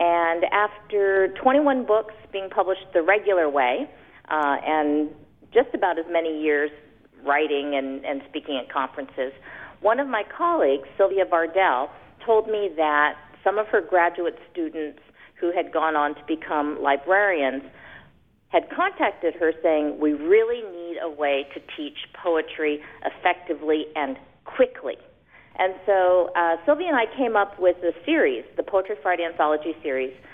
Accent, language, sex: American, English, female